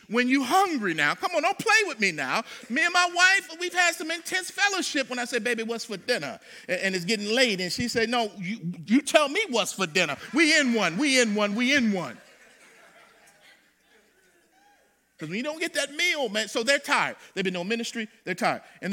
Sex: male